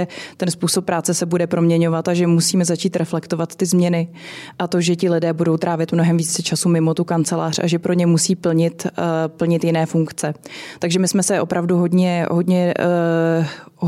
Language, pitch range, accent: Czech, 165-180 Hz, native